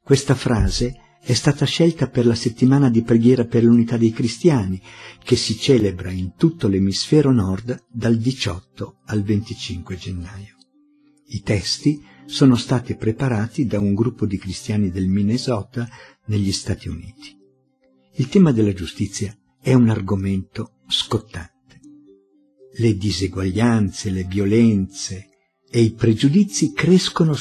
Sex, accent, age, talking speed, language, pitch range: male, native, 50-69, 125 wpm, Italian, 100-130 Hz